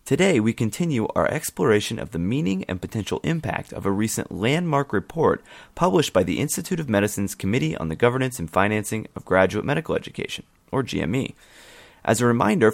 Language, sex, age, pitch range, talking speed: English, male, 30-49, 95-120 Hz, 175 wpm